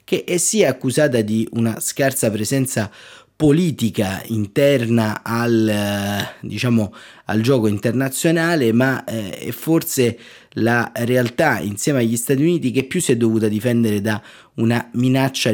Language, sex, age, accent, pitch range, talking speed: Italian, male, 30-49, native, 110-130 Hz, 125 wpm